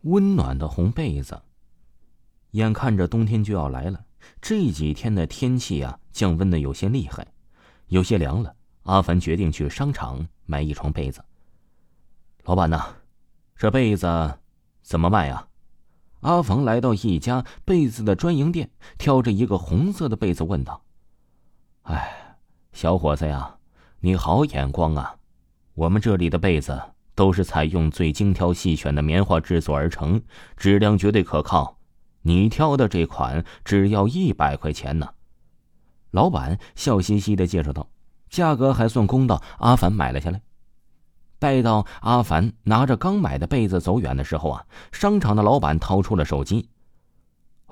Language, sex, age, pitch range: Chinese, male, 30-49, 80-110 Hz